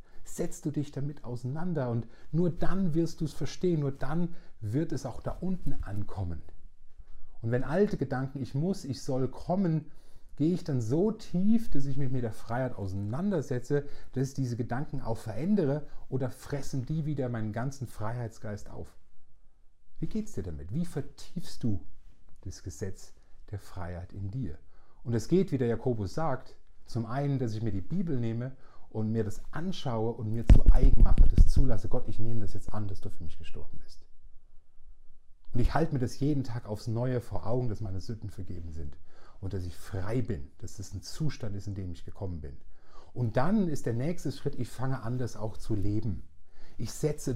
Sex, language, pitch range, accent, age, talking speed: male, German, 95-140 Hz, German, 40-59, 195 wpm